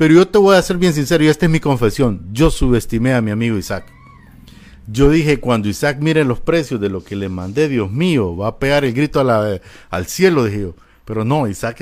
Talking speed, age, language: 240 wpm, 50-69, Spanish